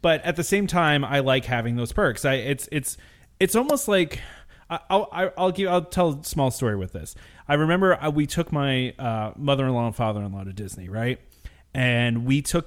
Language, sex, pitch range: English, male, 115-150 Hz